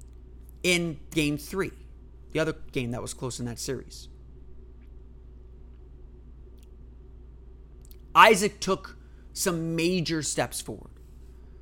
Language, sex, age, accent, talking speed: English, male, 30-49, American, 95 wpm